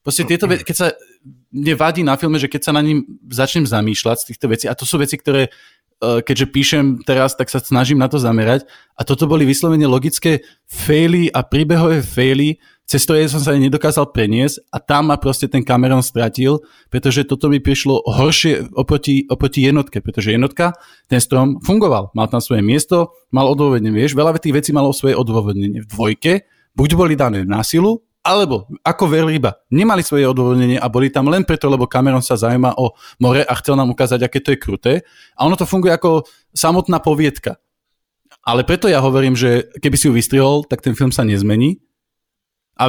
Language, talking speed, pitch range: Slovak, 185 wpm, 125-160 Hz